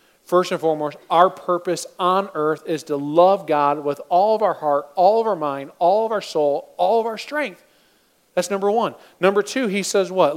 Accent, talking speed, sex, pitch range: American, 210 wpm, male, 150-205 Hz